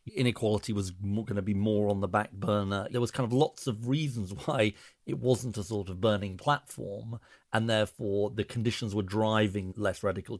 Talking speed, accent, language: 190 wpm, British, English